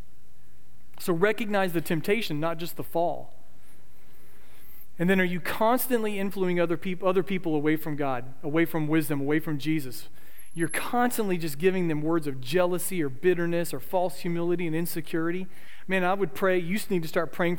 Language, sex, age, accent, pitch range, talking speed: English, male, 40-59, American, 150-185 Hz, 175 wpm